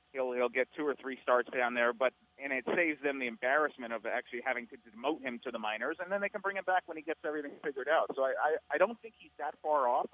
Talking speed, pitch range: 285 wpm, 120-160 Hz